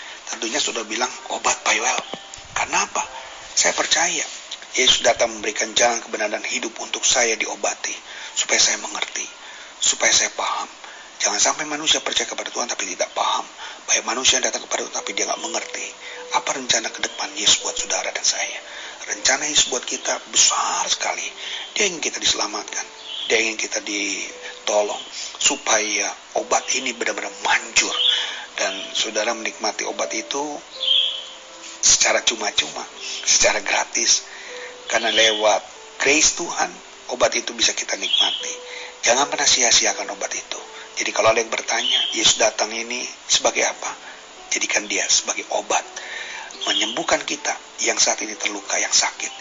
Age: 40-59